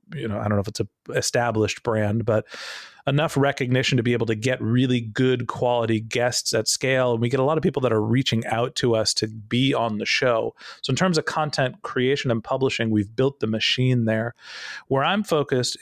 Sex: male